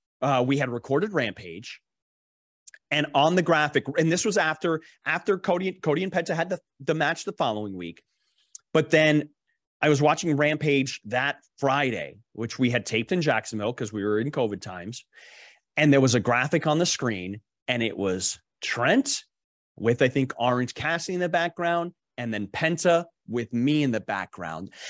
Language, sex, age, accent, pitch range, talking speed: English, male, 30-49, American, 125-175 Hz, 175 wpm